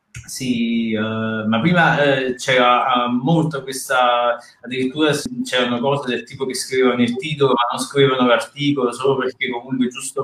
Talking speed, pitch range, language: 150 wpm, 130-195 Hz, Italian